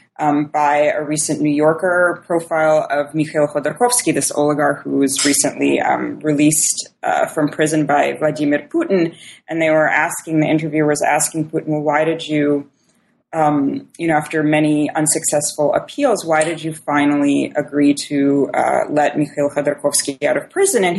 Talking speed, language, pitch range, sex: 165 wpm, English, 150-165 Hz, female